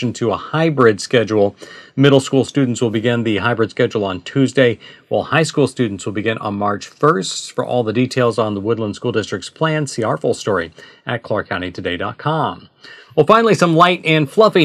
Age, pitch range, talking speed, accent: 40-59, 120-150 Hz, 185 wpm, American